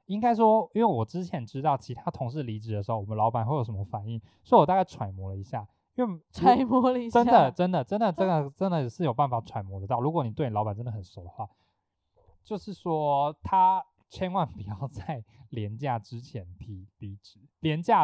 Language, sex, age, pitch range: Chinese, male, 20-39, 105-155 Hz